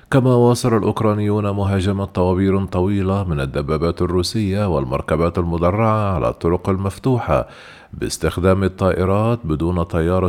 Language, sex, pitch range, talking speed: Arabic, male, 90-115 Hz, 105 wpm